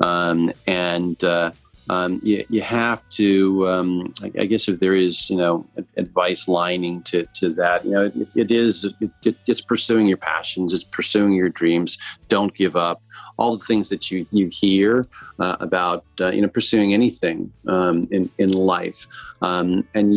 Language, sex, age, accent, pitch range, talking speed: English, male, 40-59, American, 90-105 Hz, 175 wpm